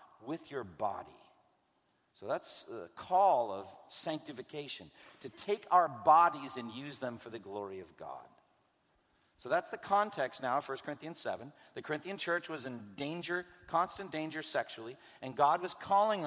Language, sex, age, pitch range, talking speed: English, male, 50-69, 120-170 Hz, 160 wpm